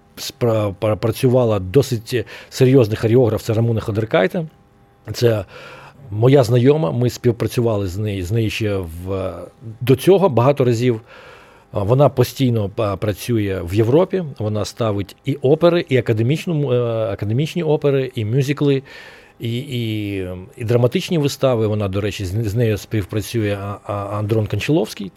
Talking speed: 115 wpm